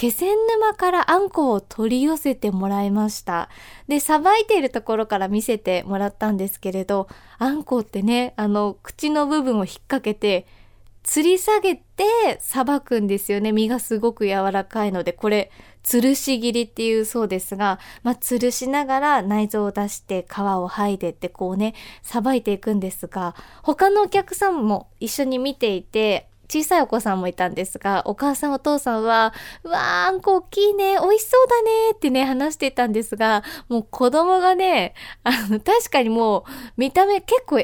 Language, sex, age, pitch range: Japanese, female, 20-39, 205-300 Hz